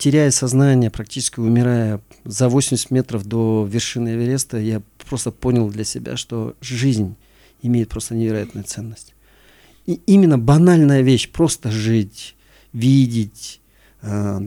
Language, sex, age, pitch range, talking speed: Russian, male, 40-59, 115-140 Hz, 115 wpm